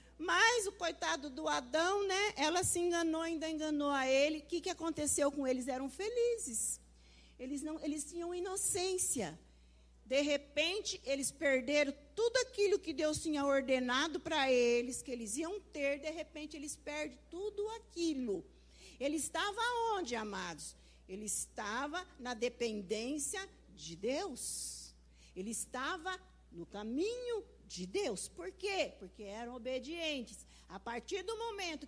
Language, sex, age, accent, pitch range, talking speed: Portuguese, female, 50-69, Brazilian, 230-330 Hz, 135 wpm